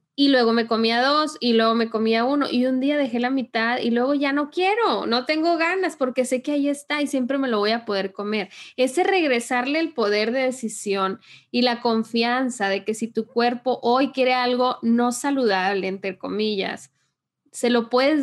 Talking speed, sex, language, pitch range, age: 200 wpm, female, Spanish, 225-265 Hz, 10-29